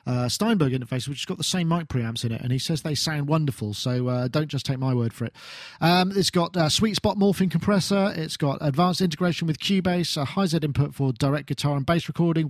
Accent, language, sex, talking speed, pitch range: British, English, male, 245 wpm, 140-170 Hz